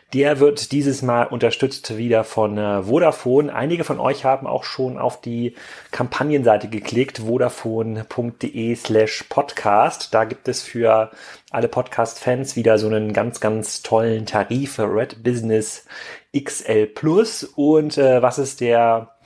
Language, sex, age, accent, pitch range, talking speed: German, male, 30-49, German, 105-130 Hz, 130 wpm